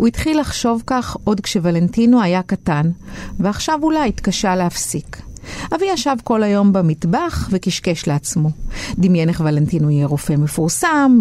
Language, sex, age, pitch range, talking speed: Hebrew, female, 50-69, 170-235 Hz, 135 wpm